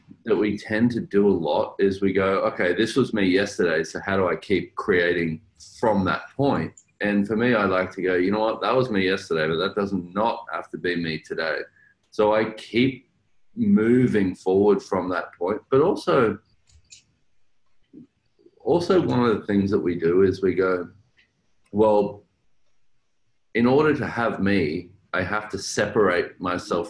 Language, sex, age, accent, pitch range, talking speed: English, male, 30-49, Australian, 95-120 Hz, 180 wpm